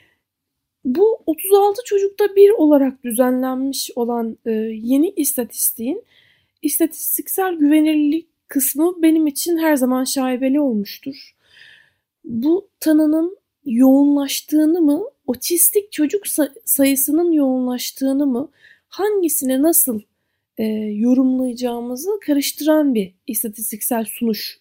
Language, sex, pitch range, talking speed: Turkish, female, 235-335 Hz, 85 wpm